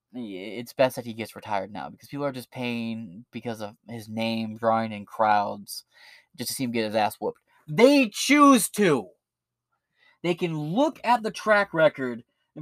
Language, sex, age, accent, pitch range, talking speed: English, male, 20-39, American, 140-230 Hz, 180 wpm